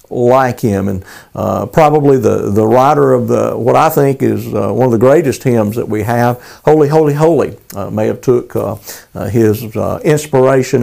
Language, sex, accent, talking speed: English, male, American, 195 wpm